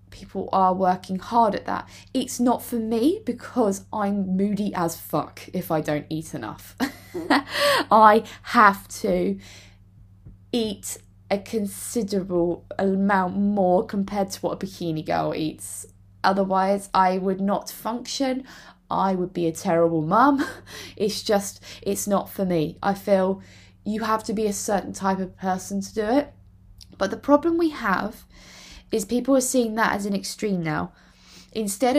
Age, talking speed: 20-39, 150 wpm